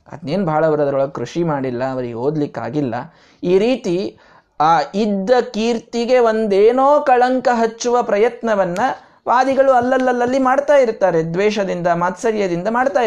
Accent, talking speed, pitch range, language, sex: native, 105 wpm, 155-230 Hz, Kannada, male